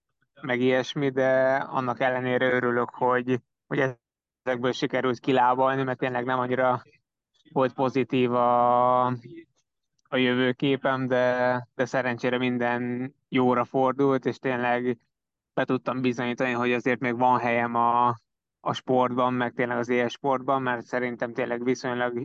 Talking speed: 130 wpm